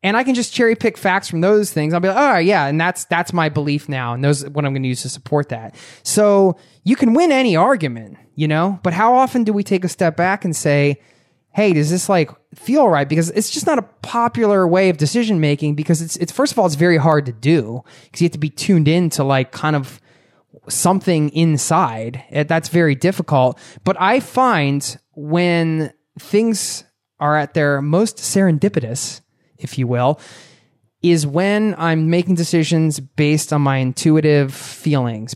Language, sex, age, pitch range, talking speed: English, male, 20-39, 135-180 Hz, 195 wpm